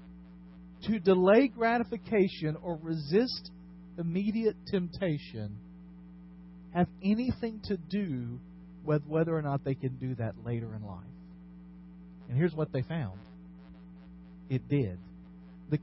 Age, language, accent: 40-59, English, American